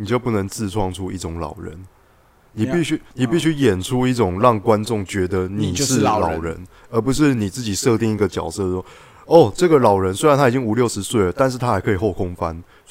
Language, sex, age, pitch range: Chinese, male, 20-39, 90-115 Hz